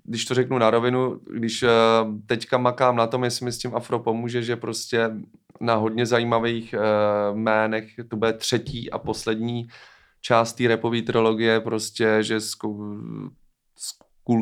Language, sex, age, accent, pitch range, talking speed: Czech, male, 20-39, native, 110-125 Hz, 150 wpm